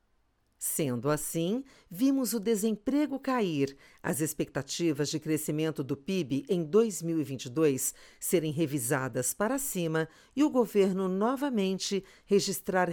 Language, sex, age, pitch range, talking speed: Portuguese, female, 50-69, 145-220 Hz, 105 wpm